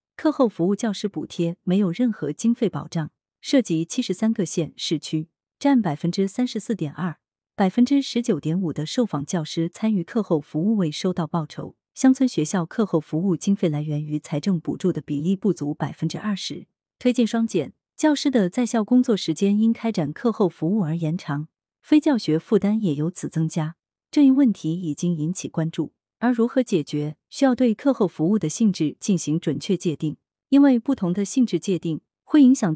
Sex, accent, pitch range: female, native, 160-225 Hz